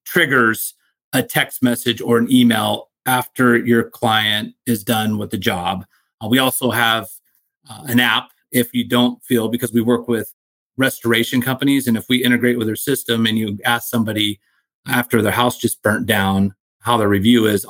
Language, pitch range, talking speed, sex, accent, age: English, 105-120 Hz, 180 wpm, male, American, 30-49